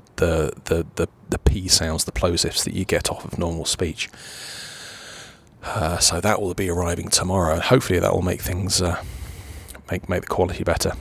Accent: British